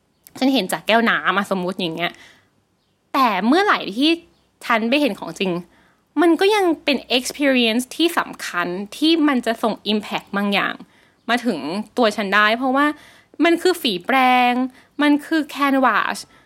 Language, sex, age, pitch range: Thai, female, 20-39, 200-295 Hz